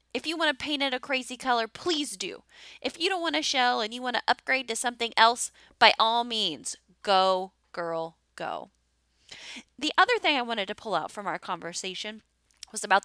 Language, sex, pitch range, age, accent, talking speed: English, female, 185-255 Hz, 20-39, American, 200 wpm